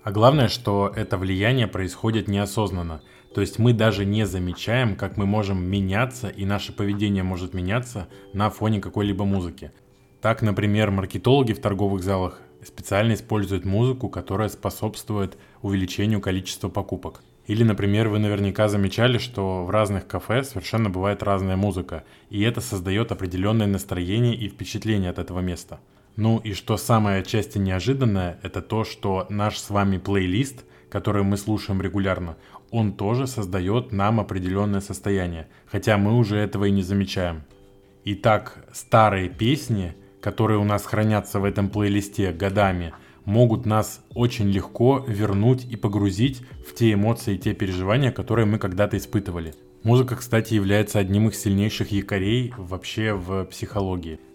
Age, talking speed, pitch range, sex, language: 20-39, 145 wpm, 95-110 Hz, male, Russian